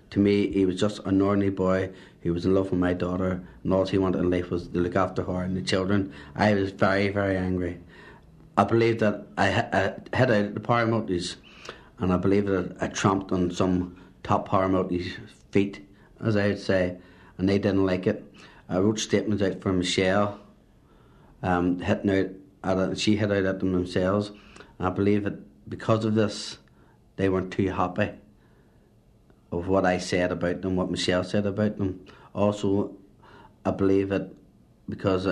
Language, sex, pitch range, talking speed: English, male, 90-100 Hz, 185 wpm